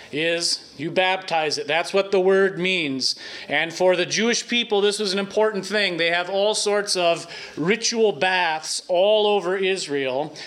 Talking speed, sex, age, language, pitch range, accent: 165 wpm, male, 30-49, English, 160-190 Hz, American